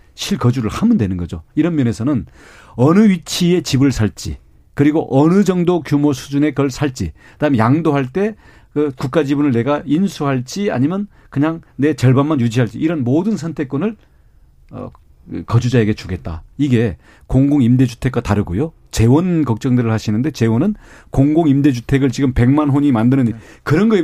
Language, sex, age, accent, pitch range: Korean, male, 40-59, native, 115-170 Hz